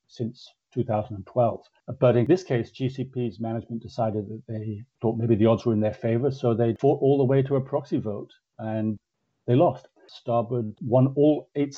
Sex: male